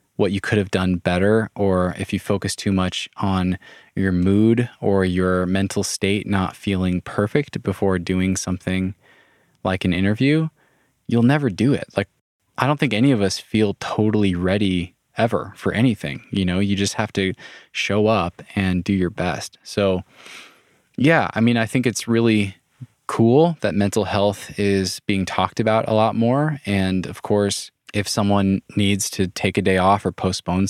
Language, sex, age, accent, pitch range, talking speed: English, male, 20-39, American, 95-105 Hz, 170 wpm